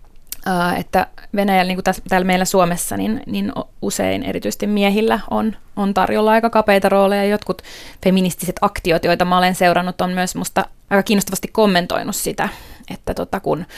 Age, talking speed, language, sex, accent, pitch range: 20-39, 155 wpm, Finnish, female, native, 175-200 Hz